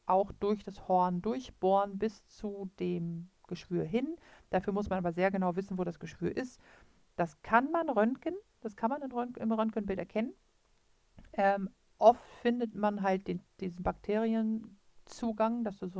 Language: German